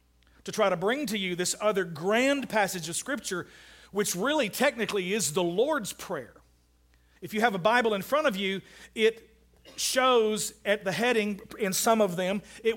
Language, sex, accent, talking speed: English, male, American, 180 wpm